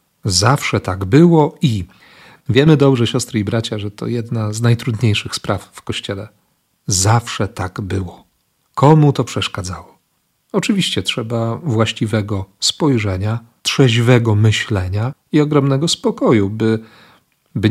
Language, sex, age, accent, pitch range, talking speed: Polish, male, 40-59, native, 105-130 Hz, 115 wpm